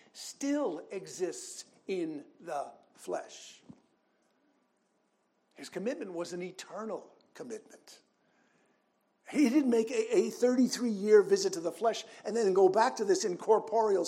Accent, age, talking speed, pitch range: American, 60-79, 120 wpm, 190-295 Hz